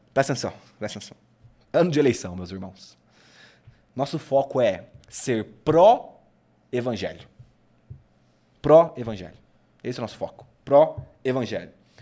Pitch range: 160-225 Hz